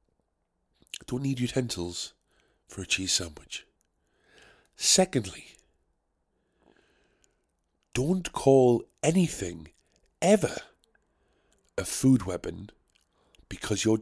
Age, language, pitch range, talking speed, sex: 50-69, English, 95-130 Hz, 75 wpm, male